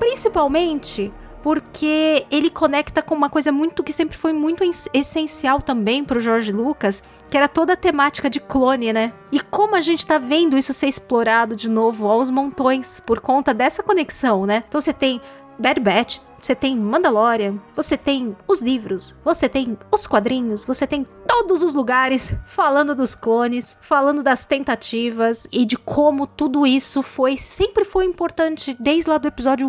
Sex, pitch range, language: female, 225-295 Hz, Portuguese